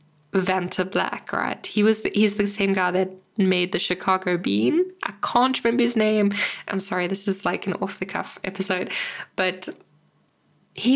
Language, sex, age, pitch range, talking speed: English, female, 10-29, 185-235 Hz, 160 wpm